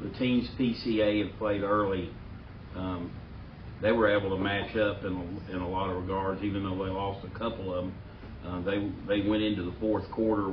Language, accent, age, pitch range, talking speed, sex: English, American, 40-59, 90-105 Hz, 205 wpm, male